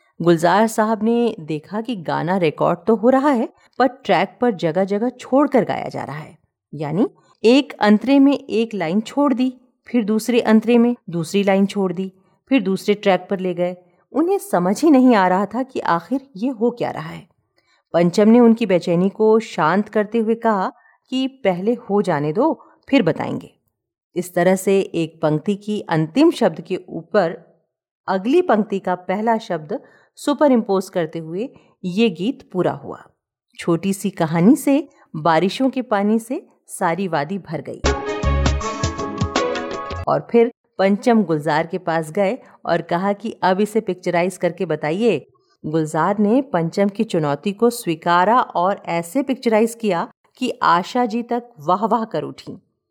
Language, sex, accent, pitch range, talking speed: Hindi, female, native, 175-240 Hz, 160 wpm